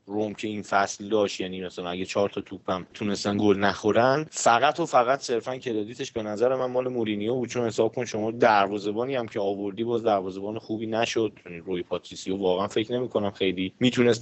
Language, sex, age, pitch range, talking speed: Persian, male, 30-49, 100-125 Hz, 200 wpm